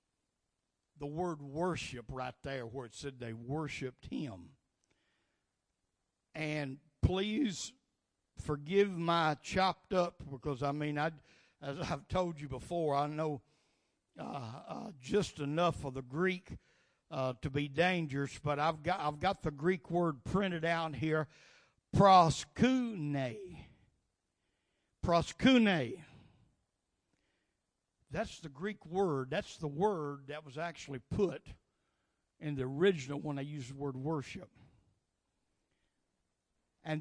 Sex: male